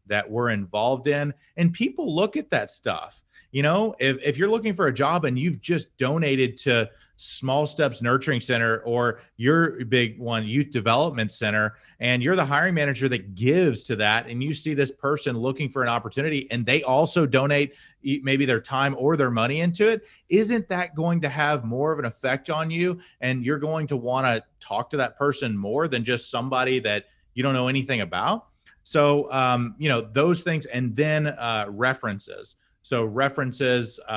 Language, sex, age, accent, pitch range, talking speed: English, male, 30-49, American, 115-150 Hz, 190 wpm